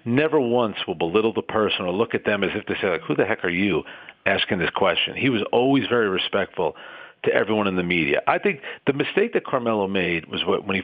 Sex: male